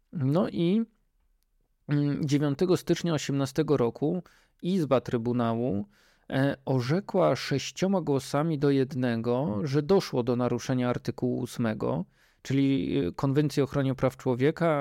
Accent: native